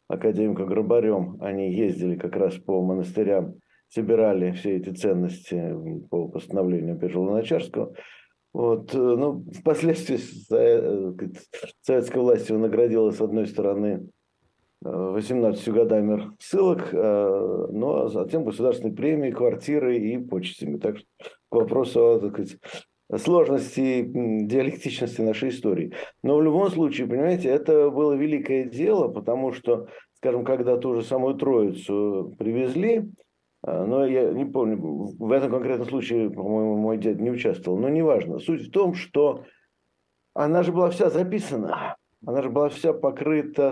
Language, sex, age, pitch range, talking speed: Russian, male, 50-69, 110-150 Hz, 120 wpm